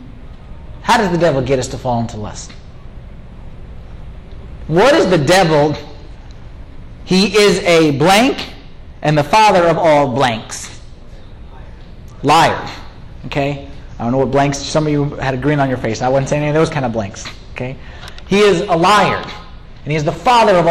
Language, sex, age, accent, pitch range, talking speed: English, male, 30-49, American, 145-205 Hz, 175 wpm